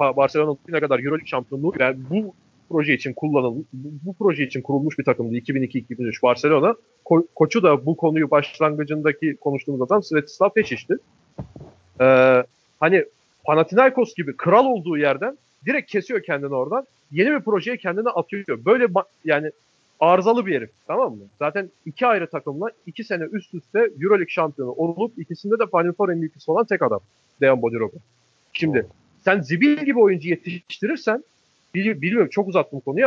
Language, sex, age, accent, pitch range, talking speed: Turkish, male, 40-59, native, 145-220 Hz, 150 wpm